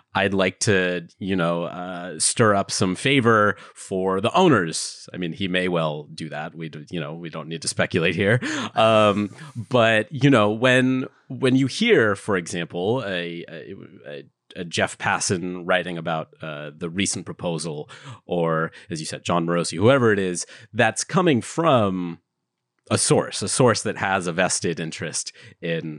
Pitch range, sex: 85-110 Hz, male